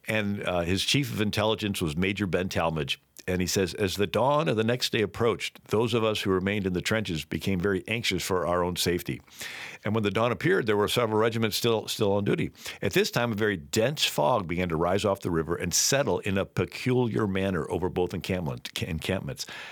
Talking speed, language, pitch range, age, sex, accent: 220 wpm, English, 90-110 Hz, 50-69, male, American